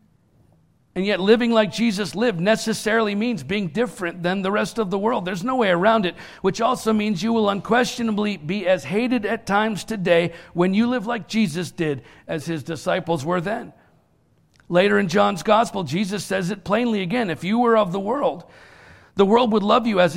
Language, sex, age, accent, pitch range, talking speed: English, male, 50-69, American, 190-230 Hz, 195 wpm